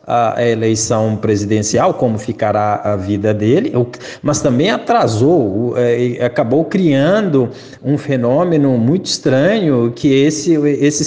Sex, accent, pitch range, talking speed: male, Brazilian, 115-145 Hz, 110 wpm